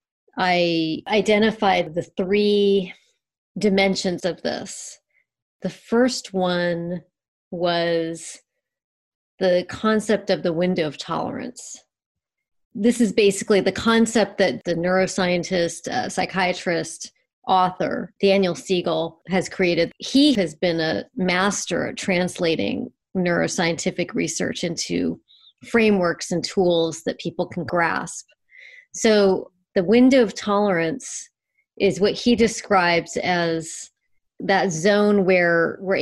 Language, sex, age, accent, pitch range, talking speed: English, female, 40-59, American, 170-205 Hz, 105 wpm